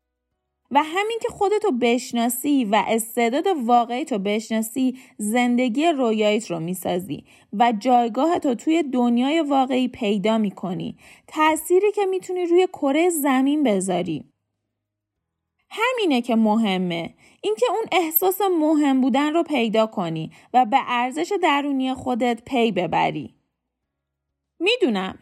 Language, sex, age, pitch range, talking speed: Persian, female, 20-39, 195-300 Hz, 110 wpm